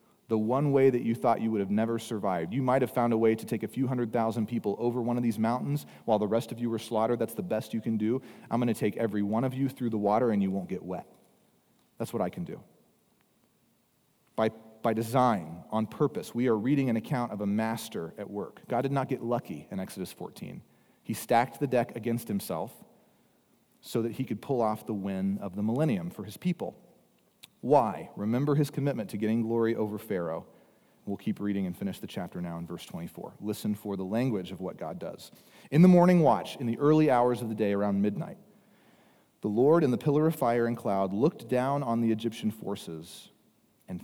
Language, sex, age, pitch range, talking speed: English, male, 40-59, 105-125 Hz, 220 wpm